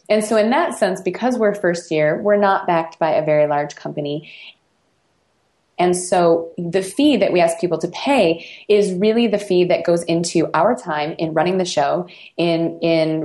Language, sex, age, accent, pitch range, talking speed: English, female, 20-39, American, 155-195 Hz, 190 wpm